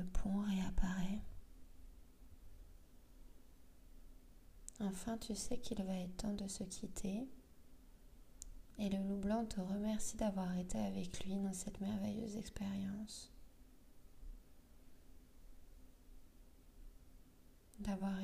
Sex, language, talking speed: female, French, 90 wpm